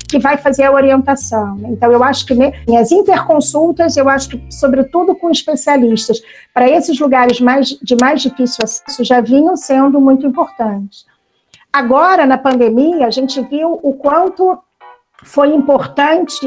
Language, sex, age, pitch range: Portuguese, female, 50-69, 245-290 Hz